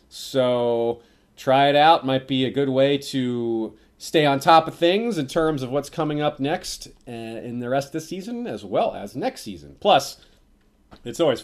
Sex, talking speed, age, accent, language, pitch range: male, 190 wpm, 30-49, American, English, 115-160 Hz